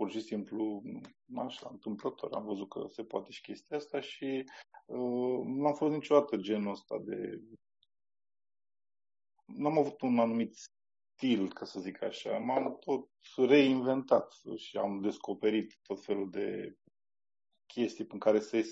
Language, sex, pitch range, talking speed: Romanian, male, 115-170 Hz, 140 wpm